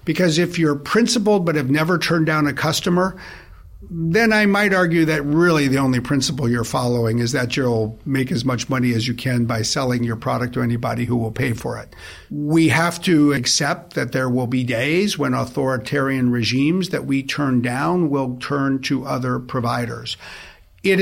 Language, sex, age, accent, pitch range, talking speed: English, male, 50-69, American, 125-160 Hz, 185 wpm